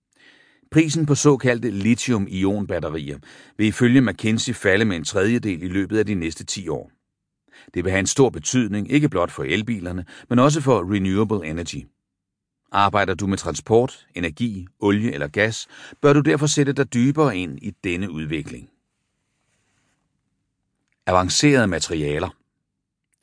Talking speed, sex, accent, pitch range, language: 135 wpm, male, native, 90-120 Hz, Danish